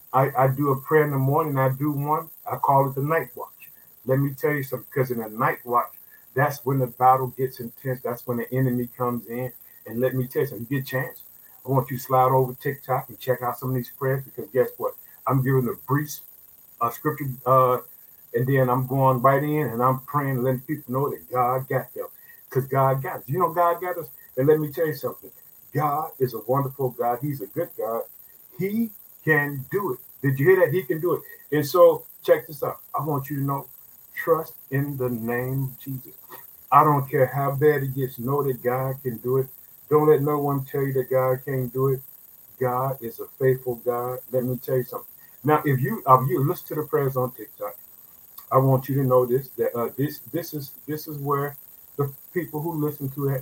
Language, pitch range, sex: English, 125-150 Hz, male